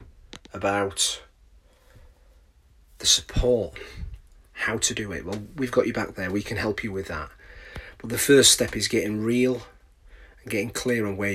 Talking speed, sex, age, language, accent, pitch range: 165 wpm, male, 30-49, English, British, 100-120 Hz